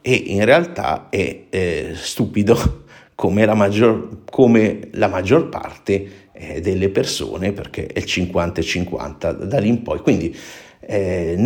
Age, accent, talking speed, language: 50-69, native, 135 wpm, Italian